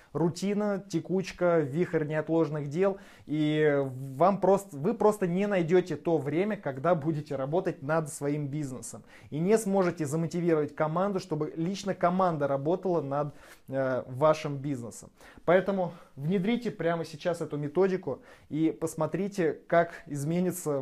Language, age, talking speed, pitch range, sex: Russian, 20-39, 125 wpm, 145-180 Hz, male